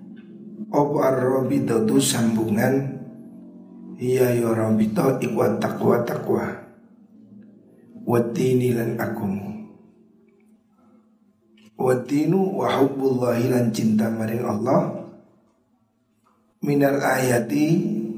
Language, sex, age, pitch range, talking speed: Indonesian, male, 60-79, 115-150 Hz, 90 wpm